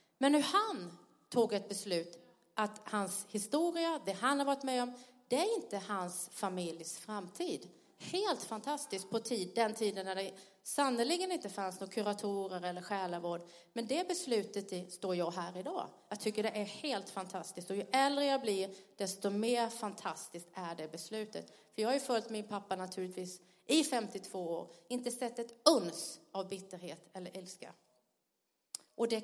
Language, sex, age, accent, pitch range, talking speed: Swedish, female, 30-49, native, 185-245 Hz, 170 wpm